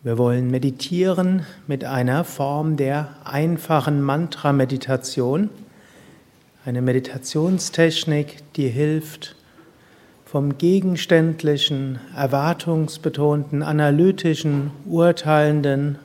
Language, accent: German, German